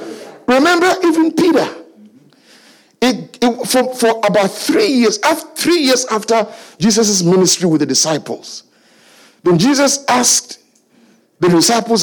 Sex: male